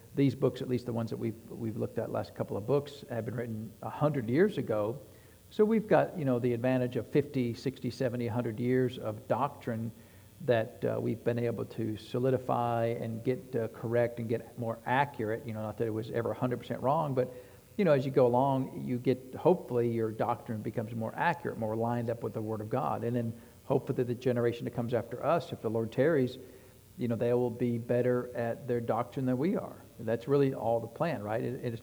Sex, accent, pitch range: male, American, 115-130 Hz